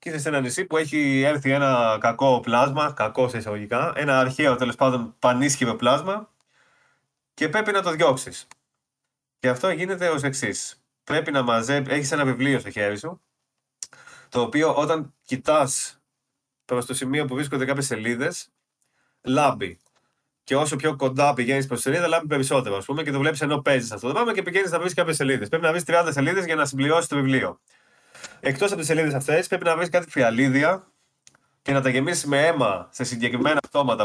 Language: Greek